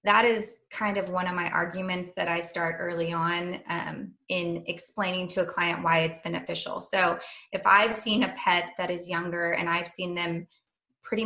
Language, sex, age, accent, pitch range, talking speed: English, female, 20-39, American, 175-225 Hz, 190 wpm